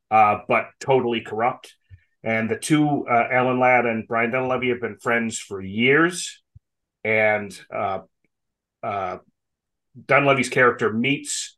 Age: 30-49